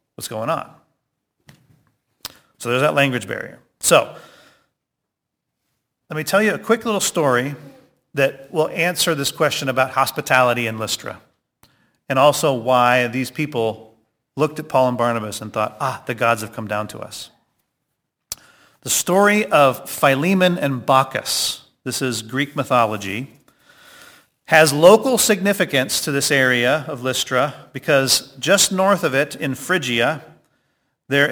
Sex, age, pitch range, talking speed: male, 40-59, 125-155 Hz, 135 wpm